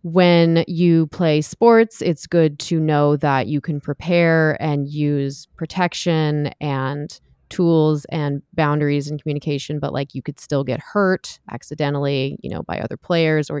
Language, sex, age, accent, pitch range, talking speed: English, female, 30-49, American, 145-175 Hz, 155 wpm